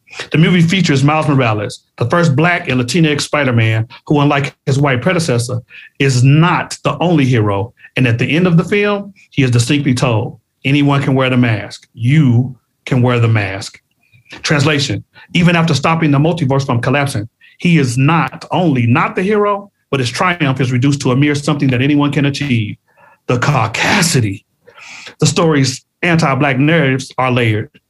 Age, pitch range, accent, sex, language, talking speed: 40-59, 125-155 Hz, American, male, English, 170 wpm